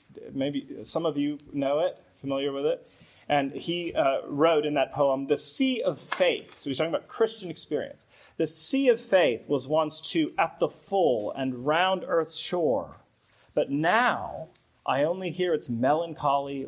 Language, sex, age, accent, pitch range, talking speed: English, male, 30-49, American, 125-160 Hz, 170 wpm